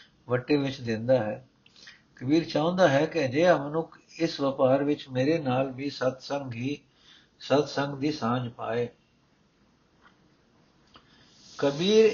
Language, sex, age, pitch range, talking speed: Punjabi, male, 60-79, 130-165 Hz, 115 wpm